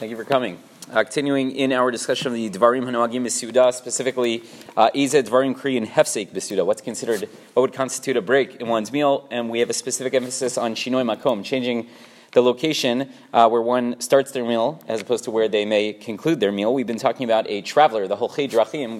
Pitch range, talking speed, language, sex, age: 120-140 Hz, 220 wpm, English, male, 30-49